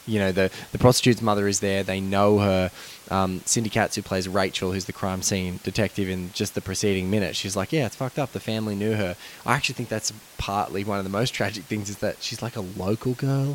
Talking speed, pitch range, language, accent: 245 wpm, 95-115 Hz, English, Australian